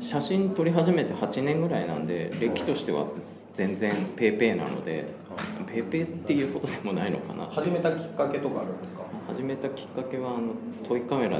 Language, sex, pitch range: Japanese, male, 100-165 Hz